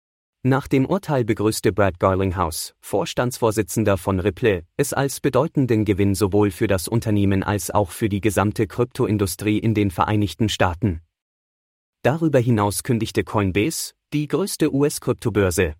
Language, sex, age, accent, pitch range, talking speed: English, male, 30-49, German, 100-120 Hz, 130 wpm